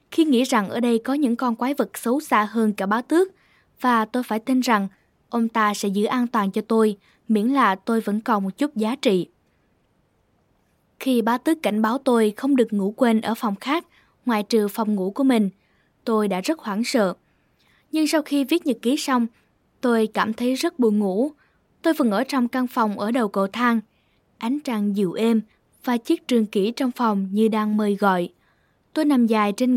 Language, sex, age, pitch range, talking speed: Vietnamese, female, 10-29, 215-265 Hz, 210 wpm